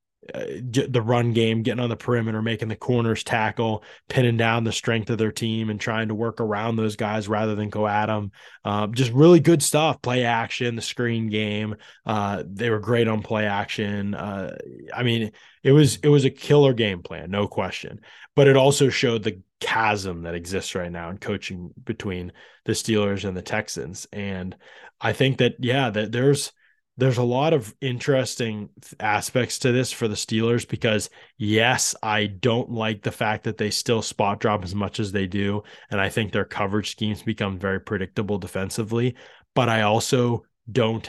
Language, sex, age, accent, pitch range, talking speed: English, male, 20-39, American, 105-120 Hz, 190 wpm